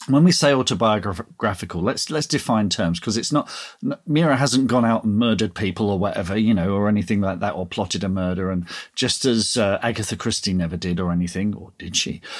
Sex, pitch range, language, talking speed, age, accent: male, 95-135 Hz, English, 210 wpm, 40-59, British